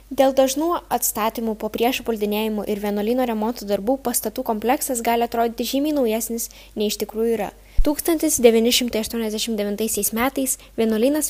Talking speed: 110 wpm